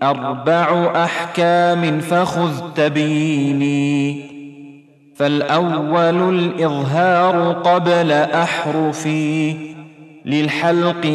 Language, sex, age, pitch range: Arabic, male, 30-49, 140-170 Hz